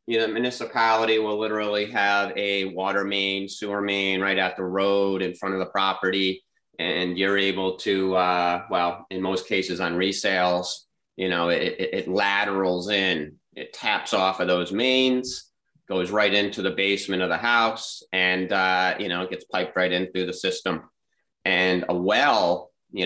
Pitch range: 90-105 Hz